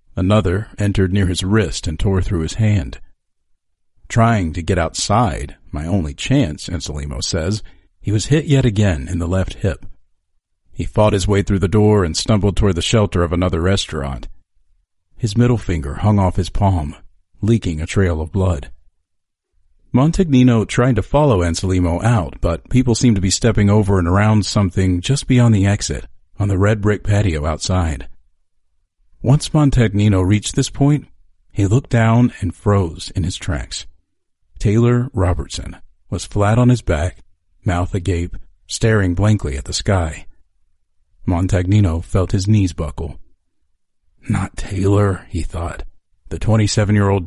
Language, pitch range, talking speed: English, 85-105 Hz, 150 wpm